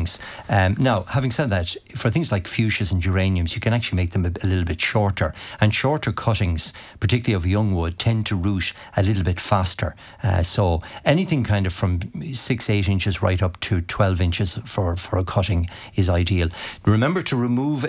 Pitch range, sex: 90-110 Hz, male